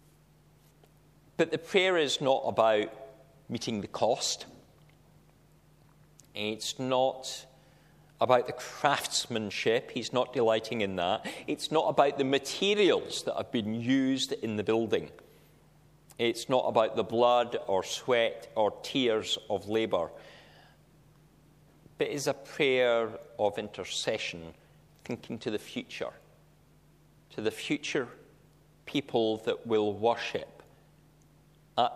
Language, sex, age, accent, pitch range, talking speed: English, male, 40-59, British, 120-150 Hz, 115 wpm